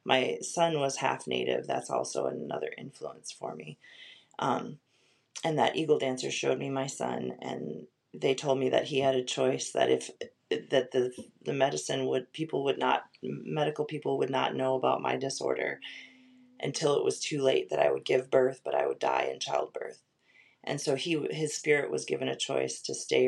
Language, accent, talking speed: English, American, 190 wpm